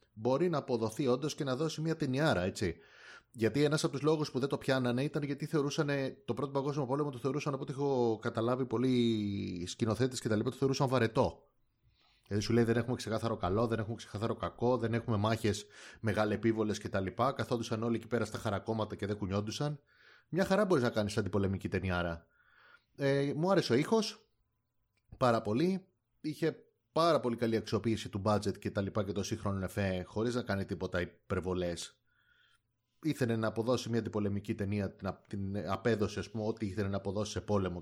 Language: Greek